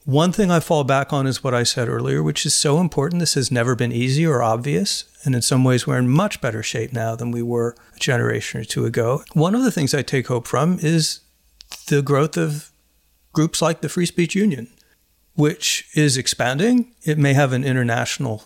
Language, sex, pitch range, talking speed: English, male, 120-160 Hz, 215 wpm